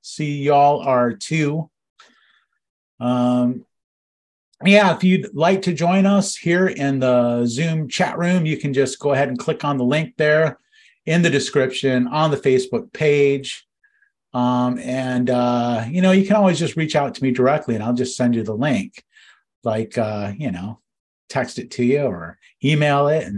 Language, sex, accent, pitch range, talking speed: English, male, American, 125-165 Hz, 175 wpm